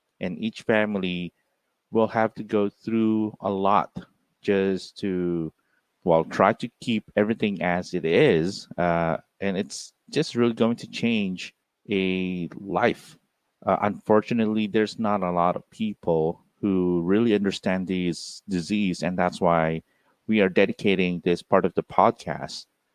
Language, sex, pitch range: English, male, 85-105 Hz